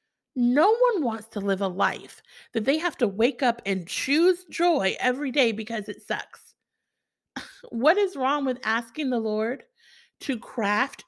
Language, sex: English, female